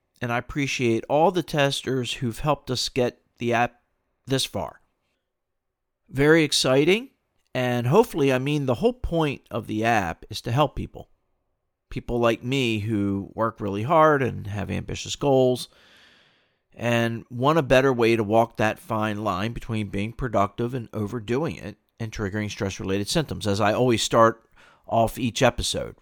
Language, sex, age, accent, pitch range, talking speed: English, male, 50-69, American, 105-125 Hz, 155 wpm